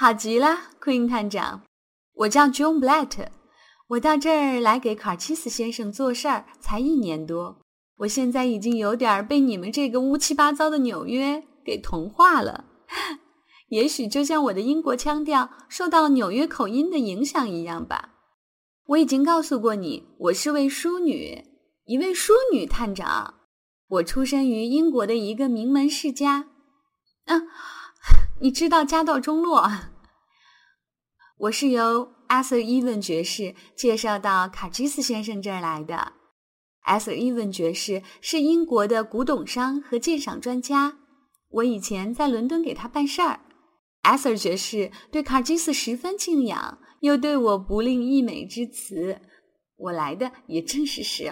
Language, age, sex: Chinese, 10-29, female